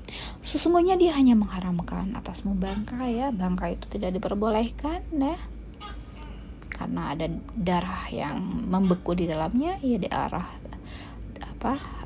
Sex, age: female, 20-39